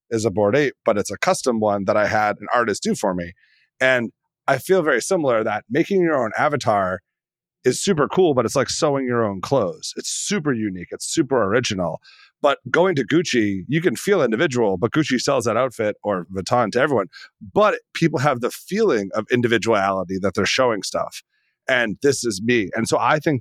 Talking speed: 205 wpm